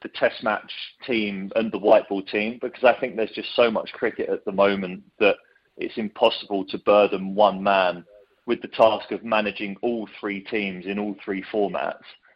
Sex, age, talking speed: male, 30-49, 190 wpm